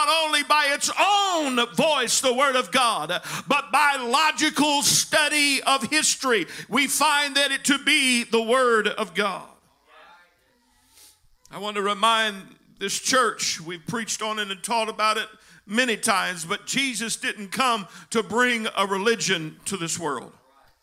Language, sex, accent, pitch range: English, male, American, 215-270 Hz